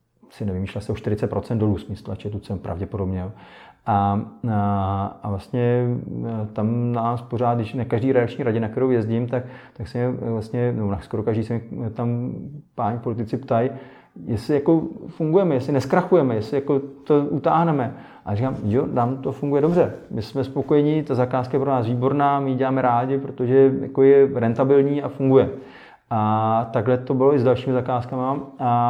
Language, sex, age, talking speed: Czech, male, 30-49, 170 wpm